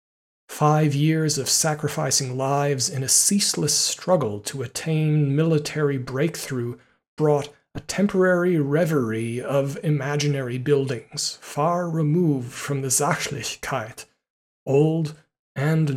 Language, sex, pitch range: English, male, 130-155 Hz